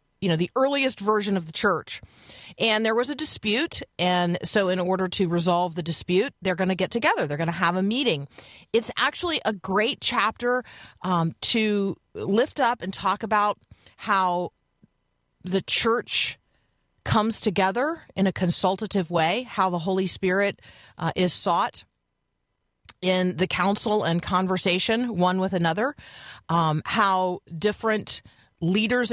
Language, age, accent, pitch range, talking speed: English, 40-59, American, 180-215 Hz, 150 wpm